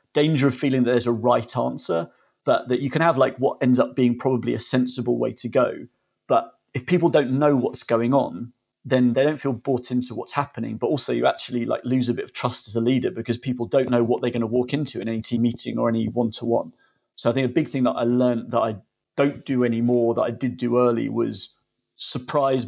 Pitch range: 120-130 Hz